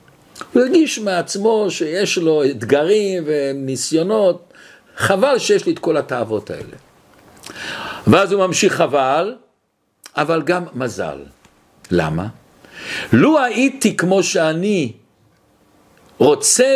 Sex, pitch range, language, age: male, 145-225 Hz, Hebrew, 60-79